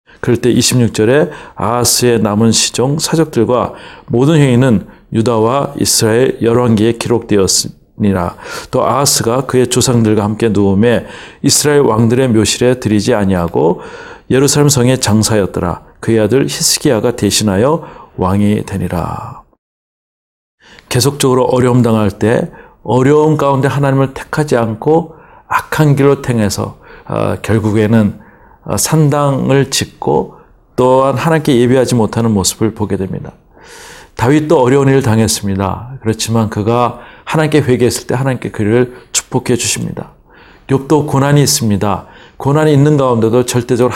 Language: Korean